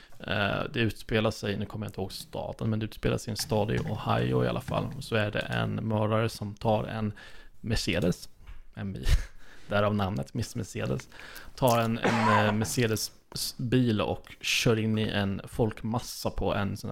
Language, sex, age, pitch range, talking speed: Swedish, male, 20-39, 100-115 Hz, 175 wpm